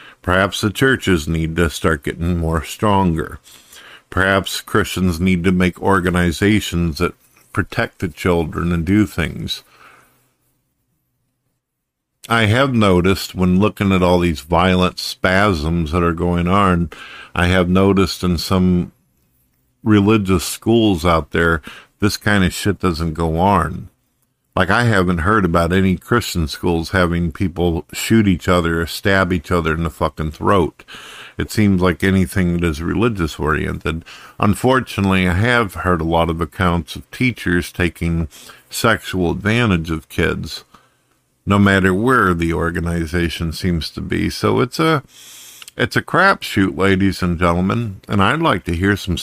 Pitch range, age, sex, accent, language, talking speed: 85-100 Hz, 50-69, male, American, English, 145 wpm